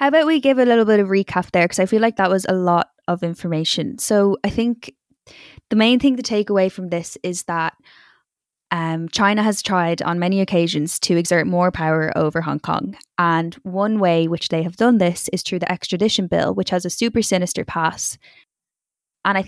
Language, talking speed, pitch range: English, 210 wpm, 170-195 Hz